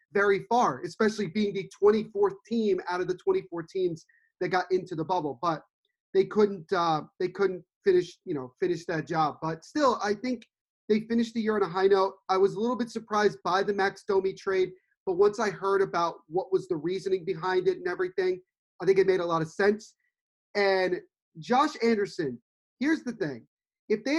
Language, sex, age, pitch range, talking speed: English, male, 30-49, 190-245 Hz, 200 wpm